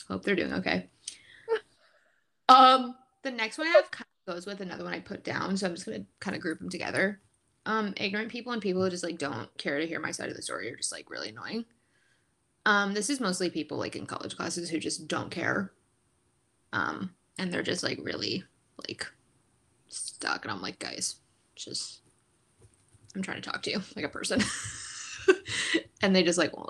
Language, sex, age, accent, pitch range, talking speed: English, female, 20-39, American, 180-250 Hz, 205 wpm